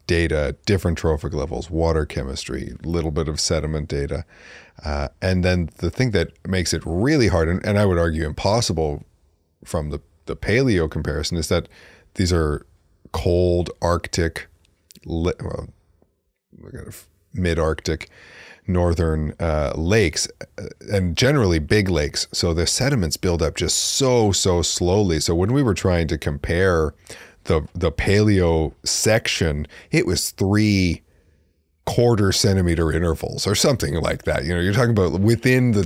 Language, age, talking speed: English, 30-49, 140 wpm